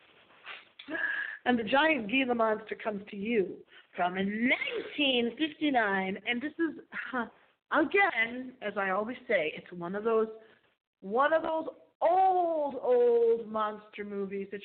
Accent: American